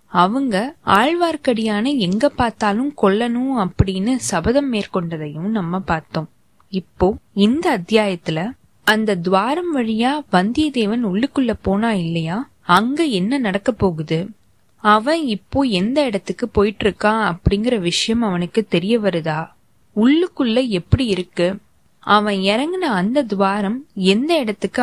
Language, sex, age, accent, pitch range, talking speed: Tamil, female, 20-39, native, 185-245 Hz, 110 wpm